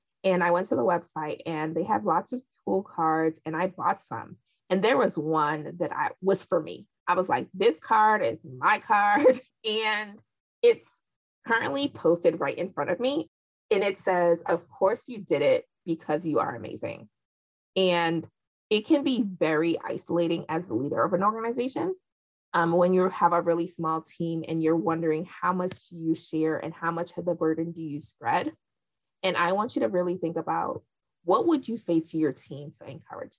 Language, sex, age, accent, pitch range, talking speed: English, female, 20-39, American, 165-200 Hz, 195 wpm